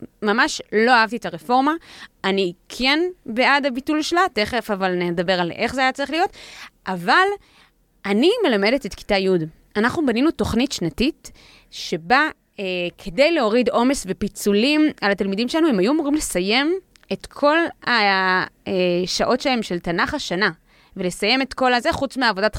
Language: Hebrew